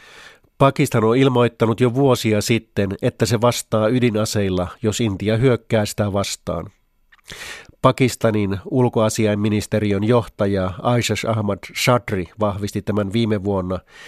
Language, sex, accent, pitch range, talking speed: Finnish, male, native, 100-120 Hz, 105 wpm